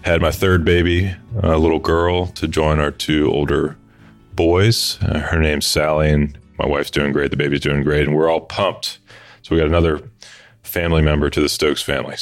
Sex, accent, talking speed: male, American, 200 wpm